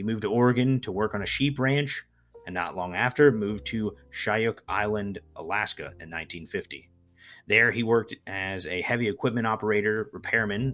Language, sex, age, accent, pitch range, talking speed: English, male, 30-49, American, 90-120 Hz, 170 wpm